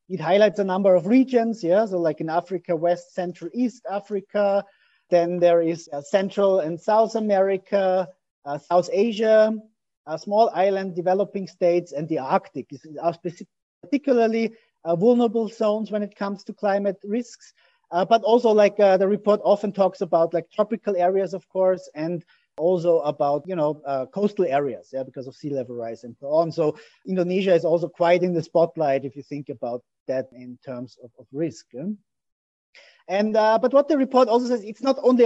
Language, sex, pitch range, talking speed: Indonesian, male, 175-215 Hz, 180 wpm